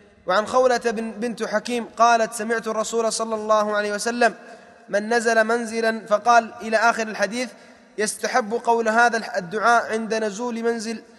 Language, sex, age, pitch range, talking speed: Arabic, male, 20-39, 215-235 Hz, 135 wpm